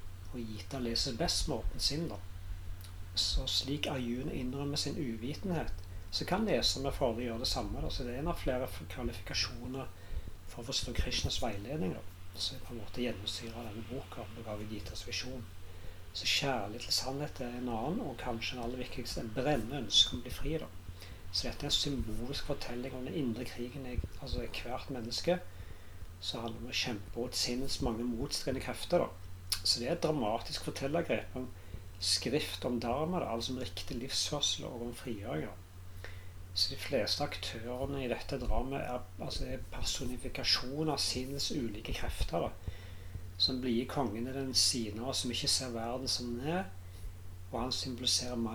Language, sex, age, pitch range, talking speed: English, male, 40-59, 90-125 Hz, 170 wpm